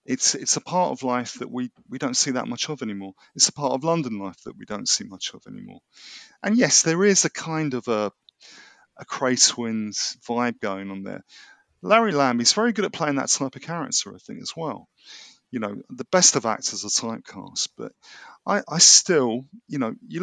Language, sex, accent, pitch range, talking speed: English, male, British, 115-185 Hz, 215 wpm